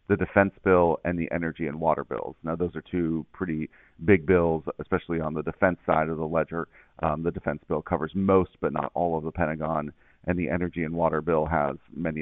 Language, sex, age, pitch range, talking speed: English, male, 40-59, 80-90 Hz, 215 wpm